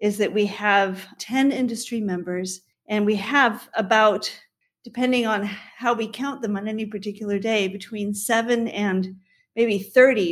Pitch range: 185-225 Hz